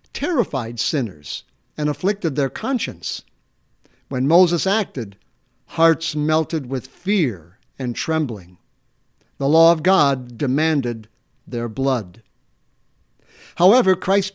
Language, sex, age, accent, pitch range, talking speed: English, male, 60-79, American, 130-175 Hz, 100 wpm